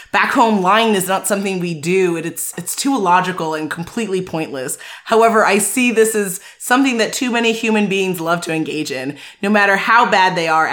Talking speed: 215 wpm